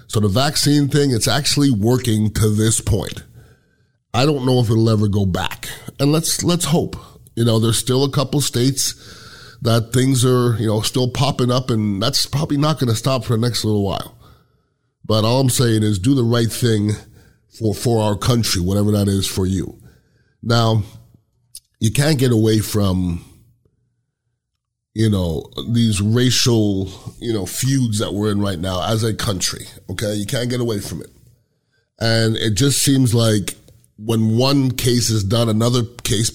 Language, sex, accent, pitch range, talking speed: English, male, American, 110-130 Hz, 175 wpm